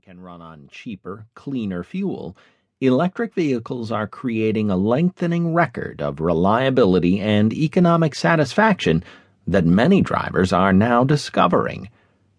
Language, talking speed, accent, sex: English, 115 wpm, American, male